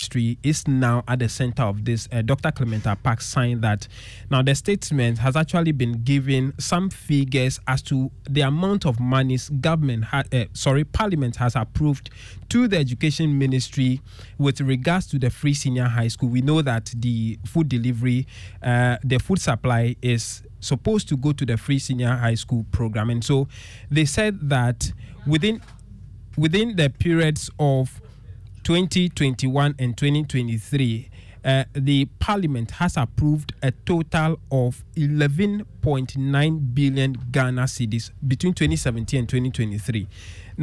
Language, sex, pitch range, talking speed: English, male, 120-155 Hz, 145 wpm